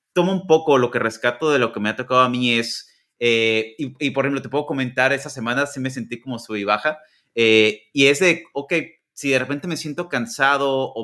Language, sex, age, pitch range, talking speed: Spanish, male, 30-49, 120-150 Hz, 240 wpm